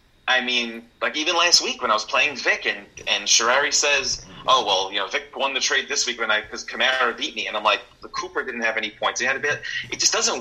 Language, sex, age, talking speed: English, male, 30-49, 270 wpm